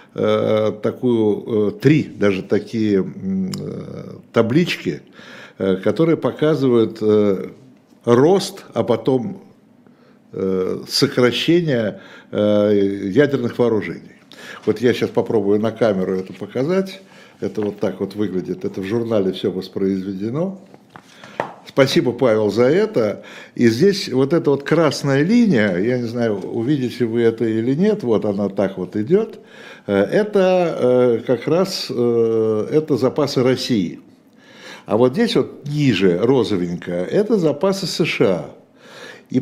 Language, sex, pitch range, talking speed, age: Russian, male, 105-160 Hz, 105 wpm, 60-79